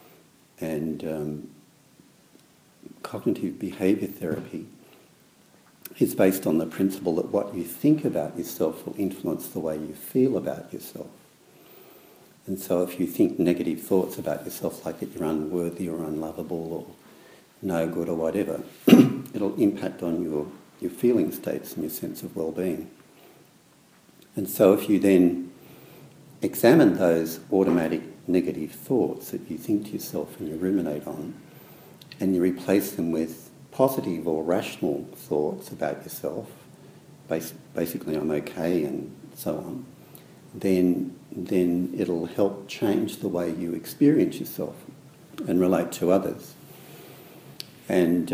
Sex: male